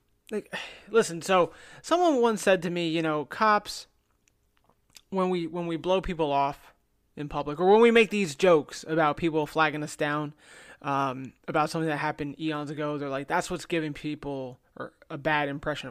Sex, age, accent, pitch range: male, 30-49, American, 145-195 Hz